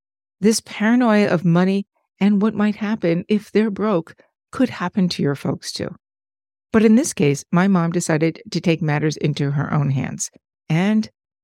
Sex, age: female, 60-79